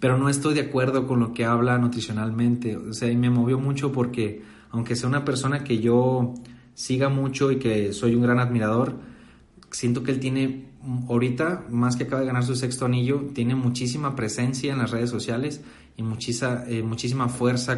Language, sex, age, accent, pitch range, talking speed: Spanish, male, 30-49, Mexican, 110-125 Hz, 185 wpm